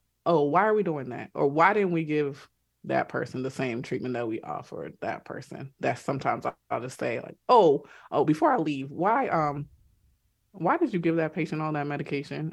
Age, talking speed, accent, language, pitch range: 20-39, 205 wpm, American, English, 130-145 Hz